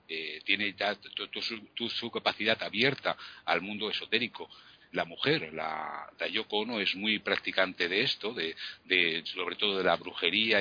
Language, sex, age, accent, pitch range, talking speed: Spanish, male, 60-79, Spanish, 90-115 Hz, 175 wpm